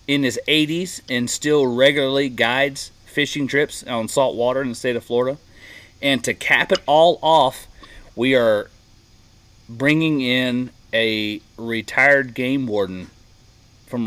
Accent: American